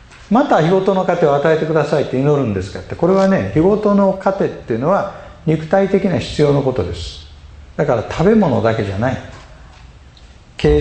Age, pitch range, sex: 50-69, 105-170 Hz, male